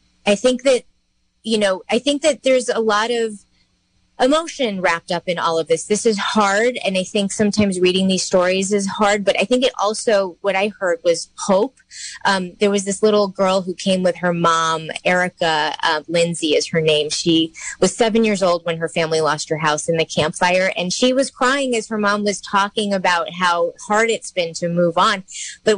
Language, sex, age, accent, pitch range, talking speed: English, female, 30-49, American, 180-225 Hz, 210 wpm